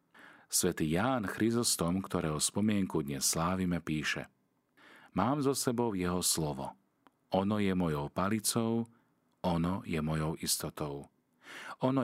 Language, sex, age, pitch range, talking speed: Slovak, male, 40-59, 80-100 Hz, 110 wpm